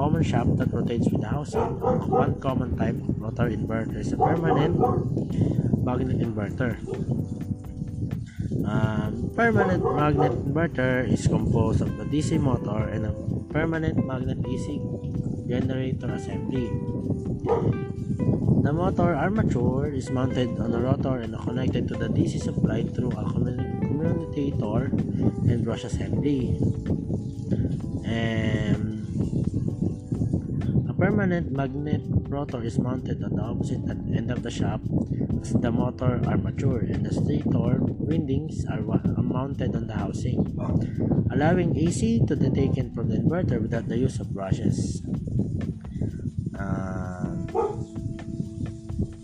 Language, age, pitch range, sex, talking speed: Filipino, 20-39, 110-135 Hz, male, 115 wpm